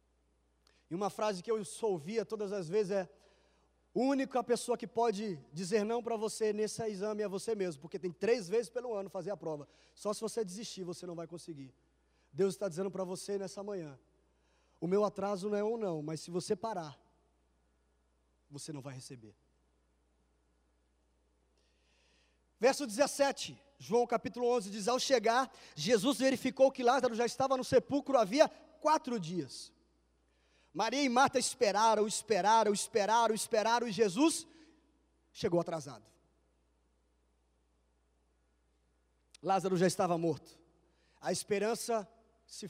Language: Portuguese